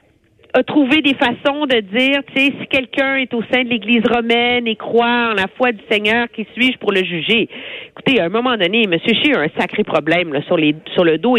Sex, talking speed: female, 235 wpm